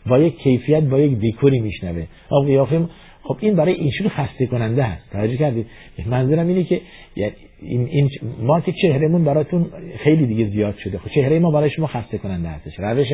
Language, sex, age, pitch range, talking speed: Persian, male, 50-69, 120-175 Hz, 185 wpm